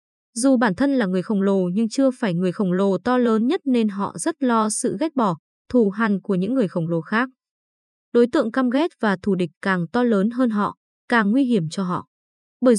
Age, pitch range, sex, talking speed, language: 20-39, 190-250 Hz, female, 230 wpm, Vietnamese